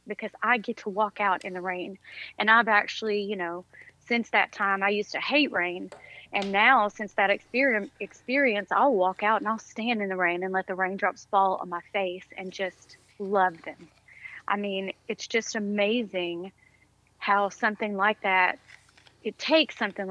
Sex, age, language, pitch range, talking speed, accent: female, 30-49, English, 185-220 Hz, 180 wpm, American